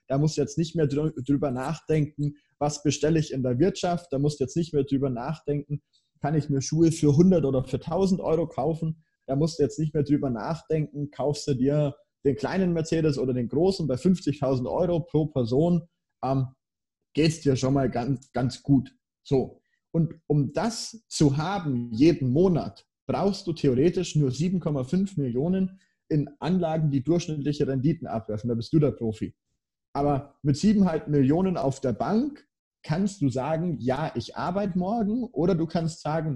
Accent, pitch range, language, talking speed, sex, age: German, 135-170 Hz, German, 175 wpm, male, 30-49